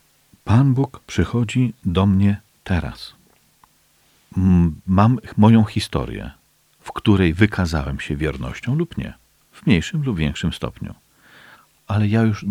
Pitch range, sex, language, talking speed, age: 75-110 Hz, male, Polish, 115 wpm, 40-59